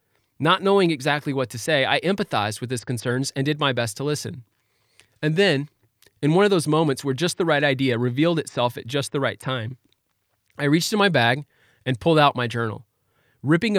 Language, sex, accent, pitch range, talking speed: English, male, American, 120-155 Hz, 205 wpm